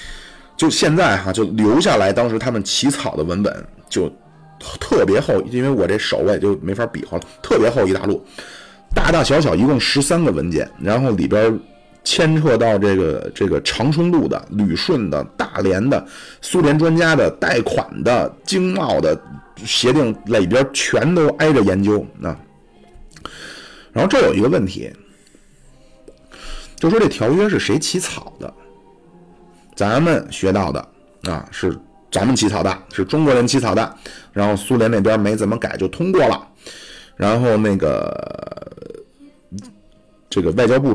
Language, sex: Chinese, male